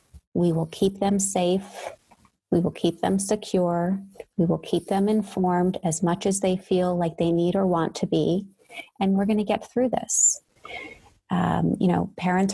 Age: 30-49